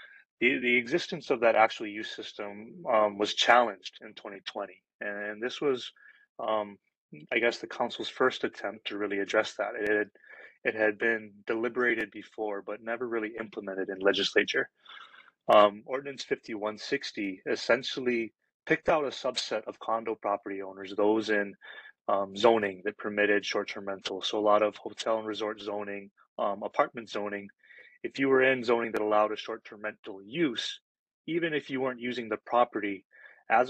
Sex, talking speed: male, 160 wpm